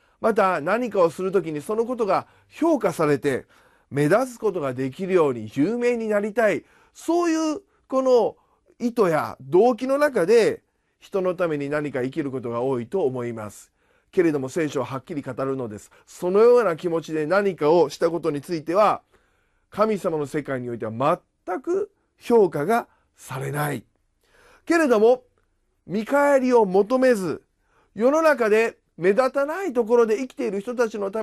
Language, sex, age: Japanese, male, 40-59